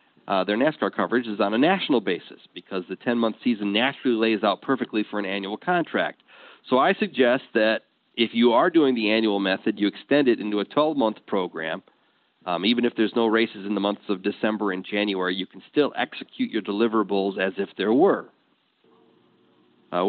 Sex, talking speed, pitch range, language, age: male, 190 wpm, 105-140 Hz, English, 40-59